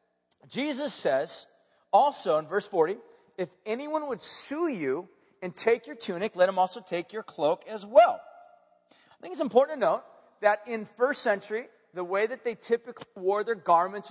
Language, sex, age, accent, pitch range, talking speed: English, male, 40-59, American, 180-230 Hz, 175 wpm